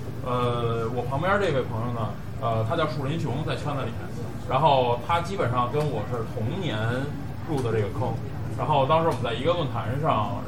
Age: 20-39